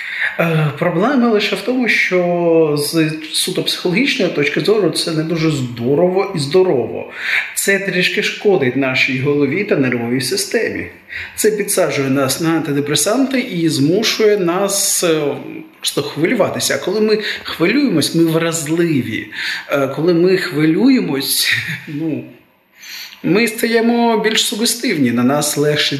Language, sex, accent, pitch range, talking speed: Ukrainian, male, native, 140-185 Hz, 120 wpm